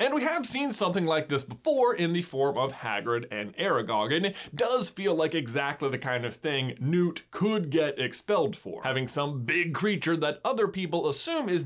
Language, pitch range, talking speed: English, 135-205 Hz, 200 wpm